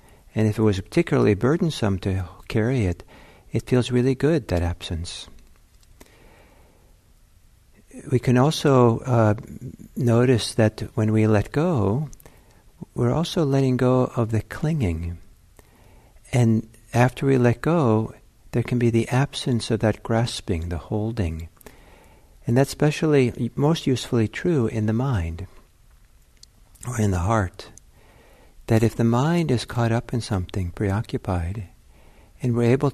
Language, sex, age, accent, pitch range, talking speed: English, male, 60-79, American, 95-125 Hz, 135 wpm